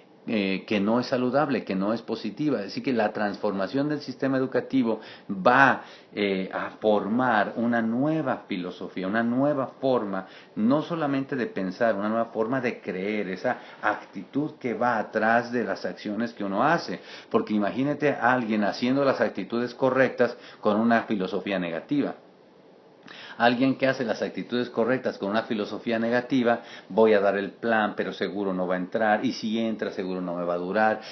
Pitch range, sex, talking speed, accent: 100-130 Hz, male, 170 wpm, Mexican